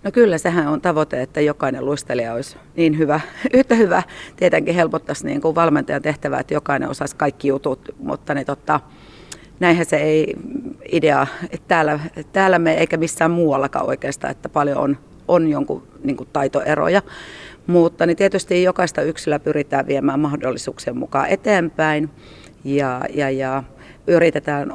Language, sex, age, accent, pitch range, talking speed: Finnish, female, 40-59, native, 140-165 Hz, 145 wpm